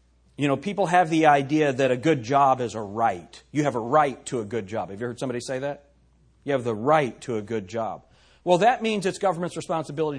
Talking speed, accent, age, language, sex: 240 wpm, American, 40-59, English, male